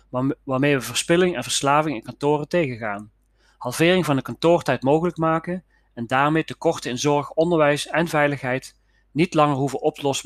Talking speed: 150 wpm